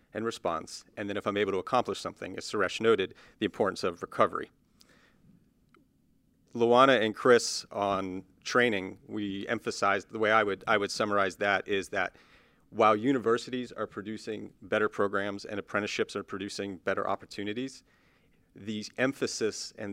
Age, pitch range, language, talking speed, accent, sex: 40-59, 100-125 Hz, English, 145 wpm, American, male